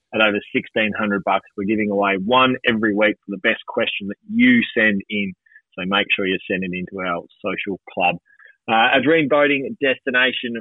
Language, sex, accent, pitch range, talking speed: English, male, Australian, 100-120 Hz, 180 wpm